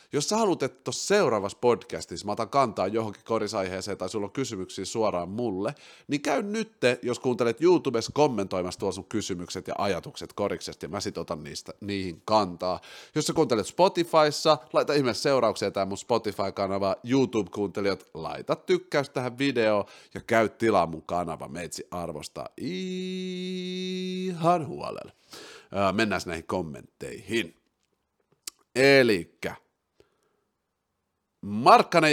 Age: 30-49